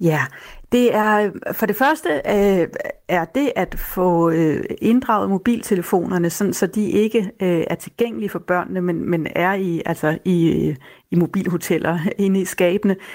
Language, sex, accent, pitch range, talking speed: Danish, female, native, 180-215 Hz, 155 wpm